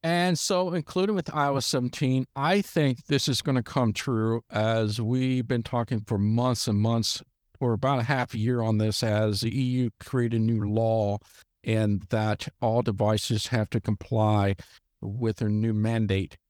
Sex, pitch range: male, 105-135 Hz